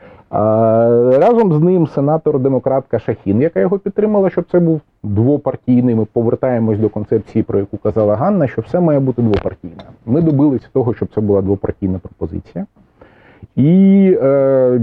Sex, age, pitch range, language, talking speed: male, 30-49, 105-145 Hz, Ukrainian, 140 wpm